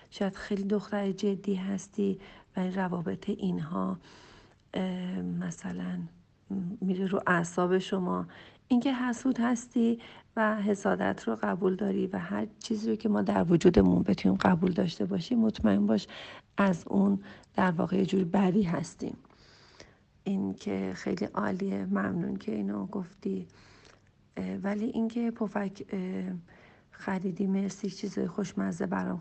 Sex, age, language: female, 50-69, Persian